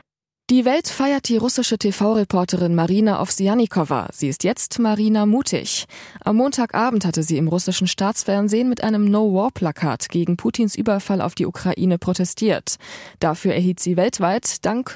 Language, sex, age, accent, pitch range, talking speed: German, female, 20-39, German, 170-225 Hz, 140 wpm